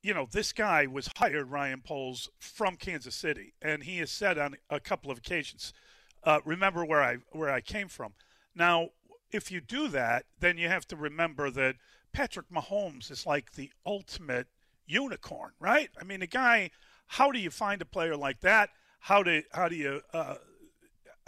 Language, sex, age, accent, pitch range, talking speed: English, male, 40-59, American, 155-215 Hz, 185 wpm